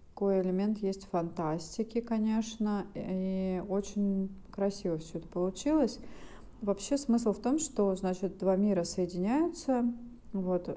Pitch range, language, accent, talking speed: 175-205 Hz, Russian, native, 115 wpm